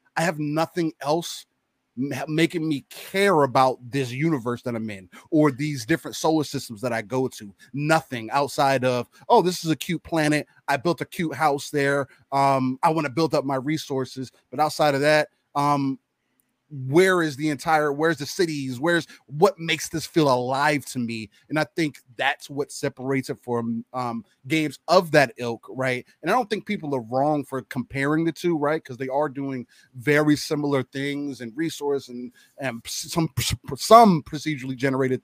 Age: 30-49